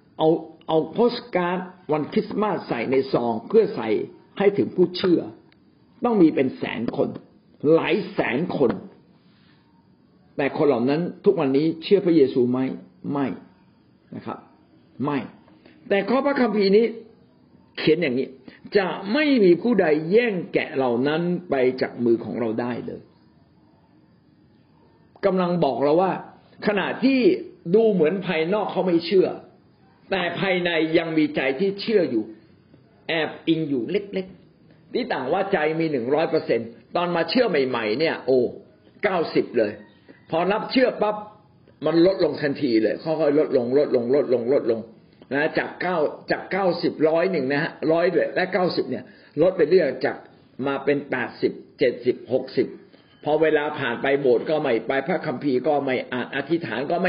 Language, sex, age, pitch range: Thai, male, 60-79, 140-200 Hz